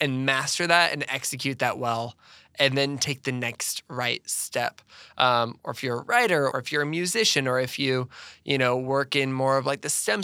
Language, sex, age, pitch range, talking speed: English, male, 20-39, 125-140 Hz, 215 wpm